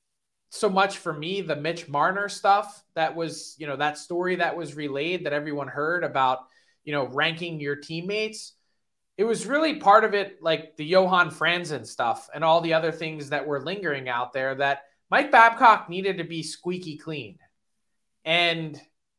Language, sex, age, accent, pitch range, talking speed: English, male, 20-39, American, 150-195 Hz, 175 wpm